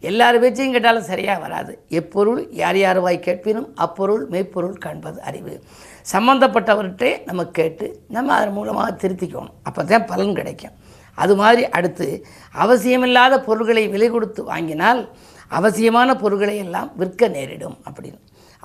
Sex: female